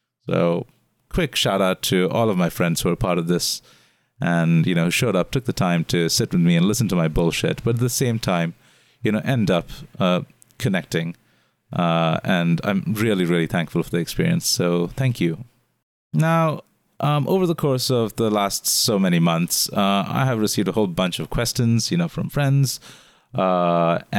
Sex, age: male, 30-49